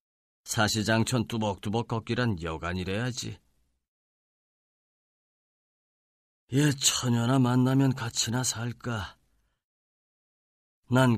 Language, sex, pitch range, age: Korean, male, 85-110 Hz, 40-59